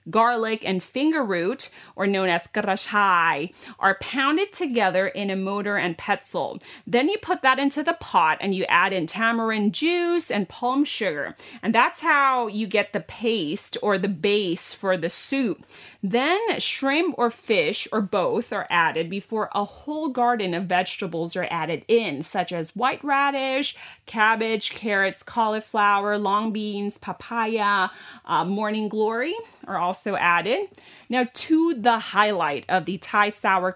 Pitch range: 190-255 Hz